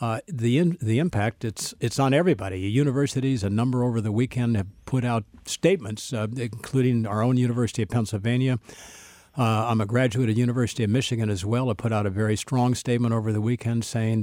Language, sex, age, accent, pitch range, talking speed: English, male, 60-79, American, 110-130 Hz, 200 wpm